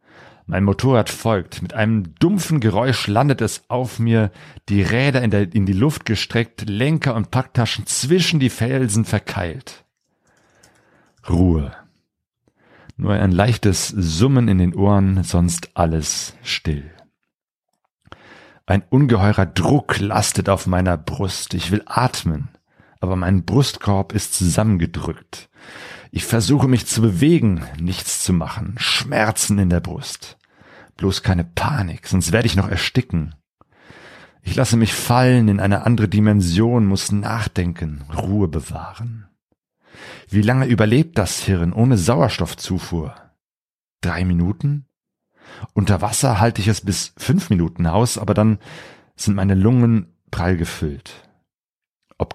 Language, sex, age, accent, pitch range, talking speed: German, male, 40-59, German, 90-120 Hz, 125 wpm